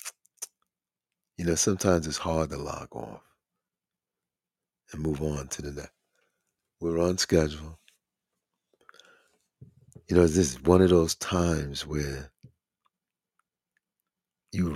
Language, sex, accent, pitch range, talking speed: English, male, American, 75-90 Hz, 110 wpm